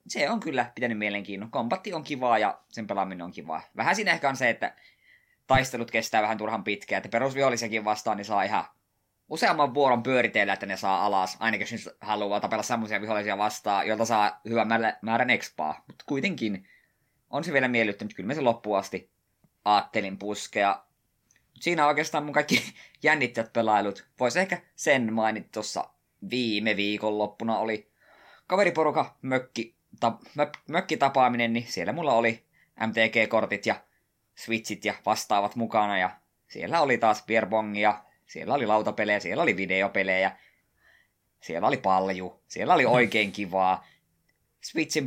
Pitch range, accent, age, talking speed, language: 105-125 Hz, native, 20-39, 145 wpm, Finnish